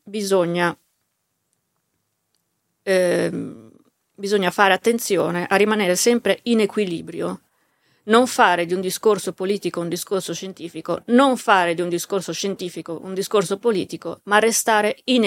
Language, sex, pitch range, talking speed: Italian, female, 175-215 Hz, 120 wpm